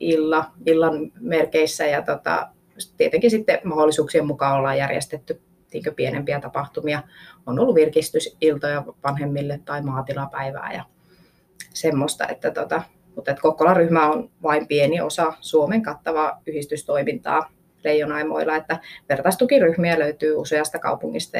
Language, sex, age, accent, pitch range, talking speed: Finnish, female, 20-39, native, 150-180 Hz, 100 wpm